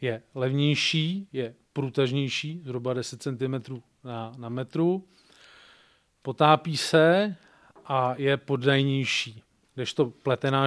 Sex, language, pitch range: male, Czech, 125-145 Hz